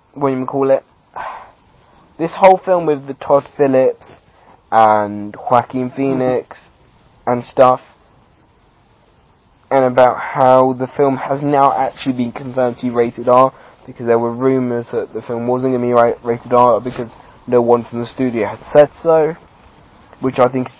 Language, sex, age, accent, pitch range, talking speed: English, male, 20-39, British, 125-145 Hz, 165 wpm